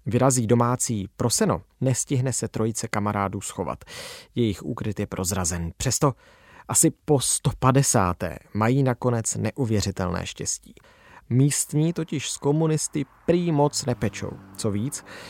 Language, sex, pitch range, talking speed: Czech, male, 100-135 Hz, 115 wpm